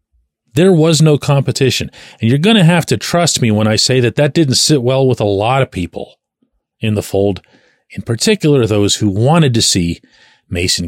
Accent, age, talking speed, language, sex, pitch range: American, 40-59, 200 wpm, English, male, 105-150 Hz